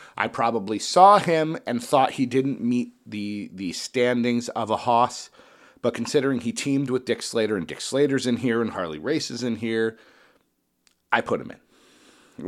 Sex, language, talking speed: male, English, 185 wpm